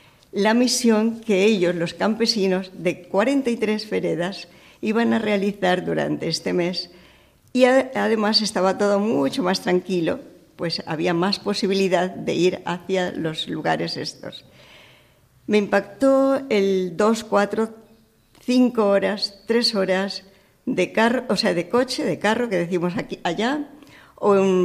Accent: Spanish